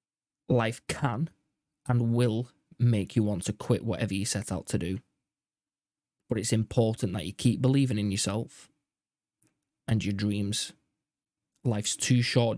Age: 20-39